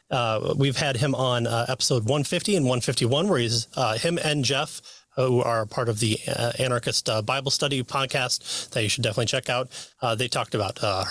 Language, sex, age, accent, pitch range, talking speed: English, male, 30-49, American, 115-150 Hz, 205 wpm